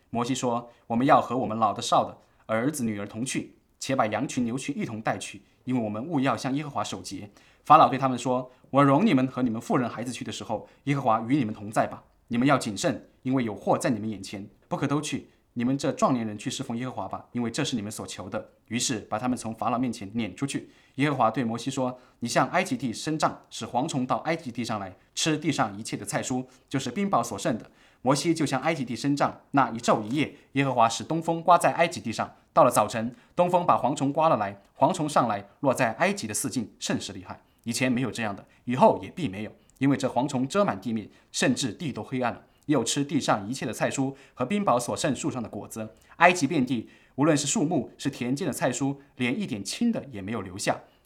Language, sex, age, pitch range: English, male, 20-39, 115-140 Hz